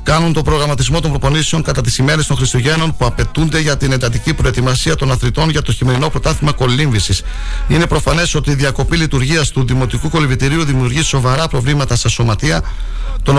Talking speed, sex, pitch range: 170 wpm, male, 120-150 Hz